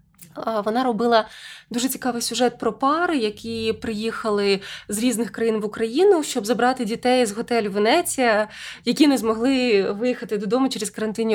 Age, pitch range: 20-39, 215-270 Hz